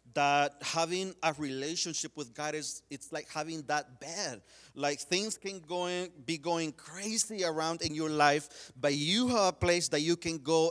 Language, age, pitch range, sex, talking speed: English, 40-59, 150-185 Hz, male, 185 wpm